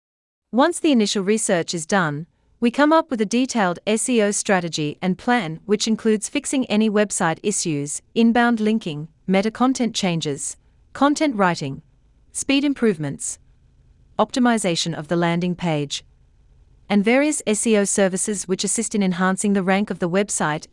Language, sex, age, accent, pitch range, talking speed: English, female, 40-59, Australian, 170-230 Hz, 140 wpm